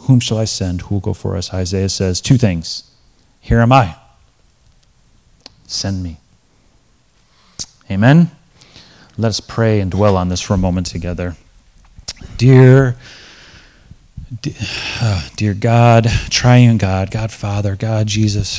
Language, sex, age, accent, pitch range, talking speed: English, male, 30-49, American, 95-110 Hz, 125 wpm